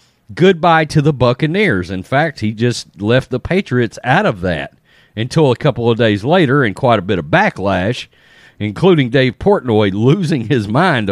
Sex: male